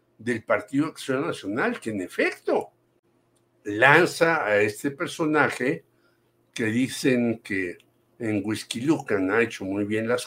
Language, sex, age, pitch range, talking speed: Spanish, male, 60-79, 115-140 Hz, 115 wpm